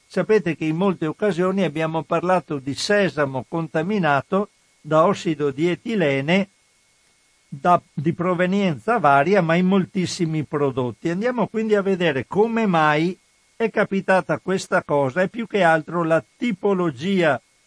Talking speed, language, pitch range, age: 125 wpm, Italian, 150-195 Hz, 50-69